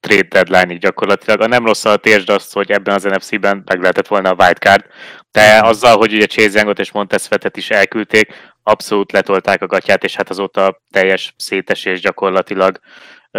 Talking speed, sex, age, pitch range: 170 wpm, male, 20-39, 100-115 Hz